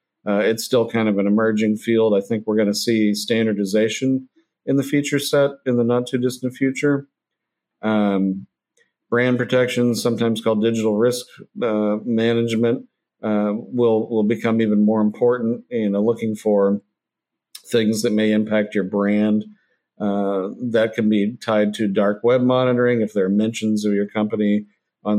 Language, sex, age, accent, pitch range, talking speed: English, male, 50-69, American, 100-115 Hz, 155 wpm